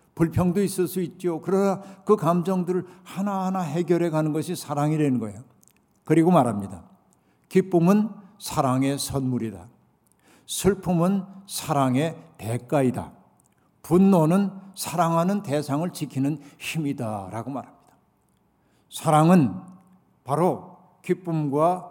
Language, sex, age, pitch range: Korean, male, 60-79, 150-185 Hz